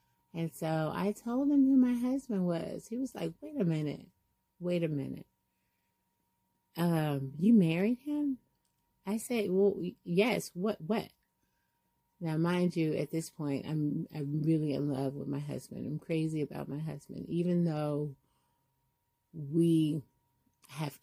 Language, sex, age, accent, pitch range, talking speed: English, female, 30-49, American, 140-175 Hz, 145 wpm